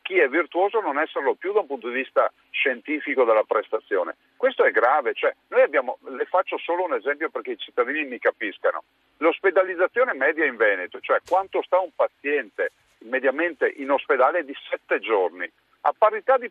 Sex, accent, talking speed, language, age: male, native, 180 wpm, Italian, 50-69